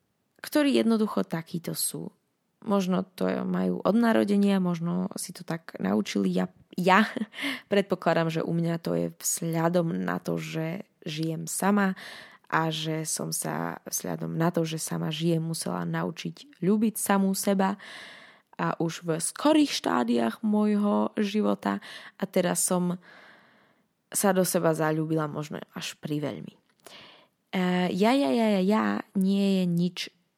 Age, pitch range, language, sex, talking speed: 20-39, 165-205 Hz, Slovak, female, 135 wpm